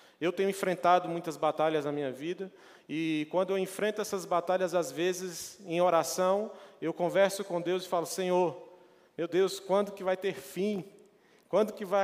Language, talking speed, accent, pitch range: Portuguese, 175 wpm, Brazilian, 170-205 Hz